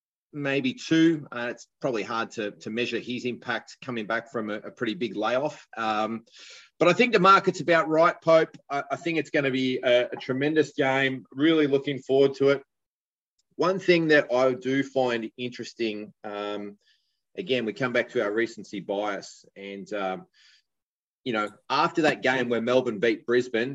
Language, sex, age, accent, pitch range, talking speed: English, male, 30-49, Australian, 115-140 Hz, 180 wpm